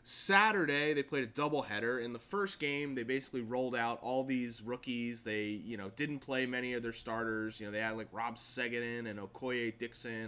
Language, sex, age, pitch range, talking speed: English, male, 20-39, 110-140 Hz, 205 wpm